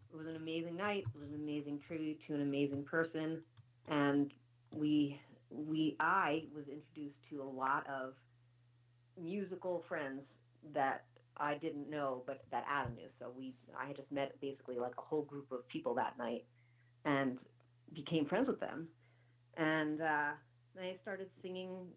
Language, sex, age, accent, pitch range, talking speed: English, female, 30-49, American, 130-165 Hz, 165 wpm